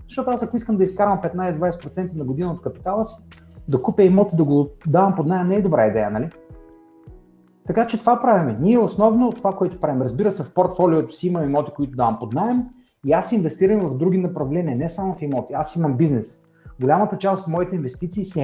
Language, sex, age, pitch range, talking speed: Bulgarian, male, 30-49, 140-185 Hz, 210 wpm